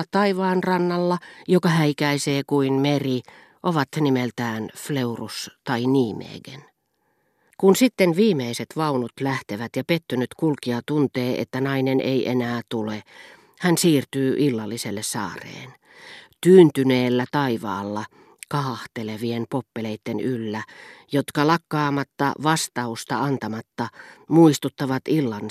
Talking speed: 95 wpm